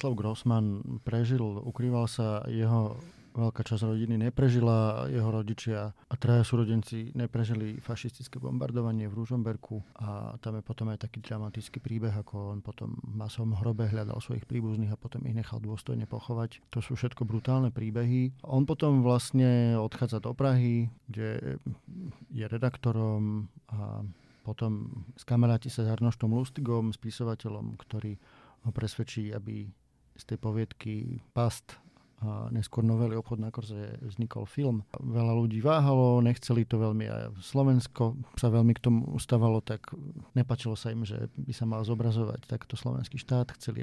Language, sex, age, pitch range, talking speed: Slovak, male, 40-59, 110-120 Hz, 145 wpm